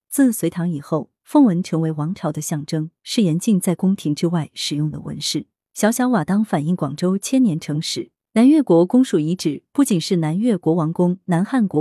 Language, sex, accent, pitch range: Chinese, female, native, 160-220 Hz